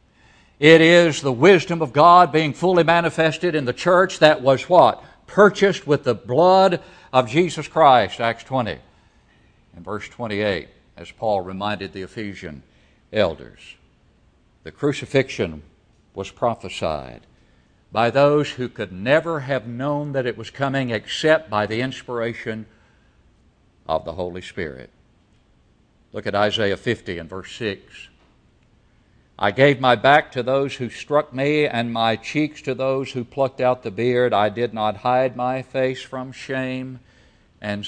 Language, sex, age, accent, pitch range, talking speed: English, male, 60-79, American, 110-150 Hz, 145 wpm